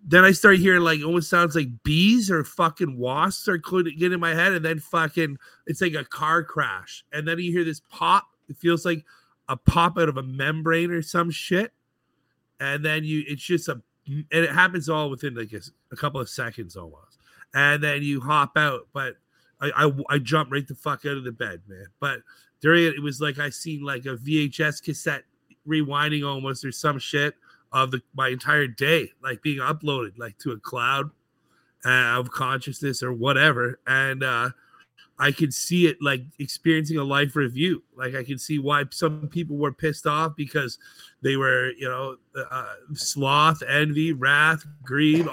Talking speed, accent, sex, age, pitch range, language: 190 wpm, American, male, 30-49, 135-160 Hz, English